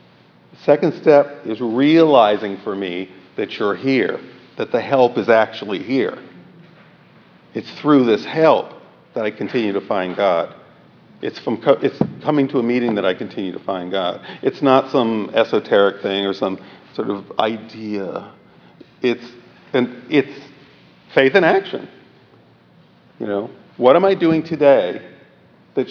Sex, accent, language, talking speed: male, American, English, 145 wpm